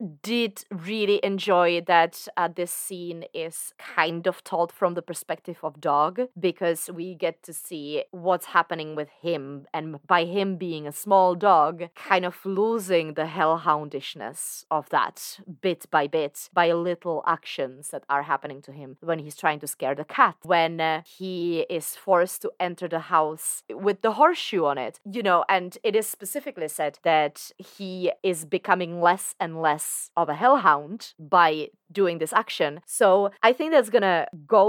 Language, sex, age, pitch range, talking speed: English, female, 30-49, 155-195 Hz, 170 wpm